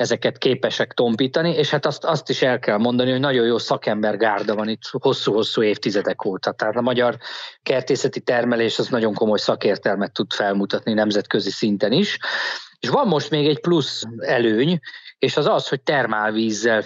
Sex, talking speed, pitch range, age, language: male, 165 wpm, 110-140 Hz, 20-39, Hungarian